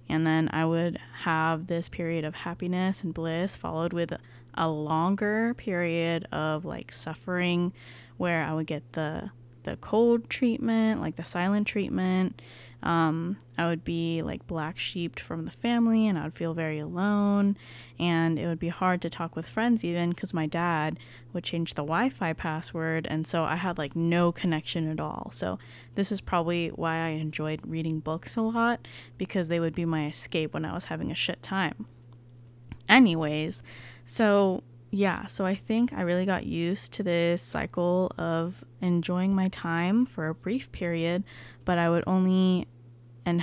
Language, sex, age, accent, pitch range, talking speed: English, female, 10-29, American, 155-180 Hz, 170 wpm